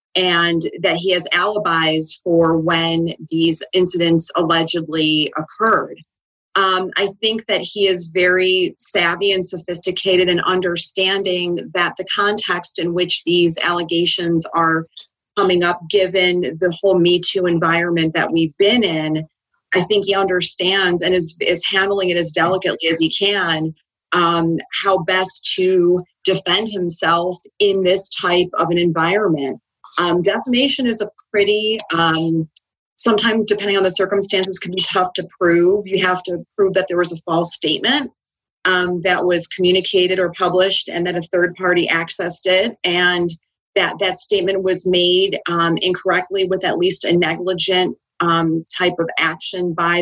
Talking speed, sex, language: 150 wpm, female, English